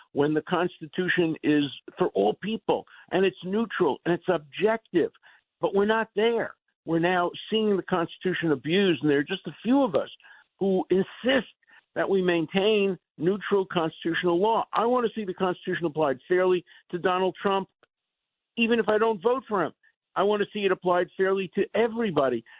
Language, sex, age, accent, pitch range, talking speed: English, male, 50-69, American, 150-210 Hz, 175 wpm